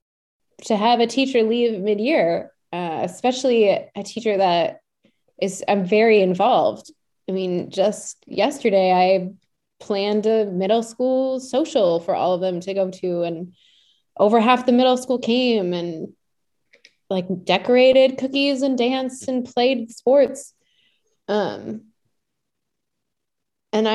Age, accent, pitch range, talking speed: 20-39, American, 185-240 Hz, 125 wpm